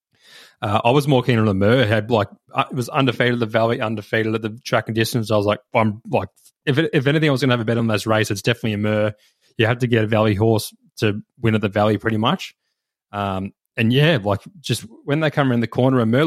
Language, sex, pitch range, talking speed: English, male, 110-125 Hz, 260 wpm